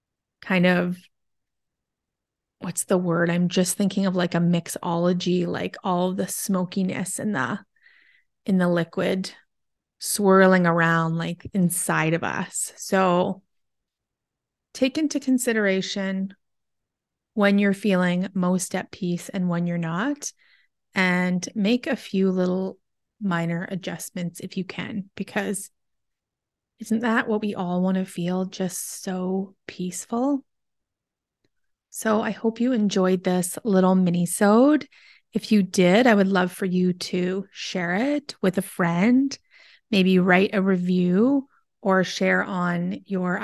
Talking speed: 130 wpm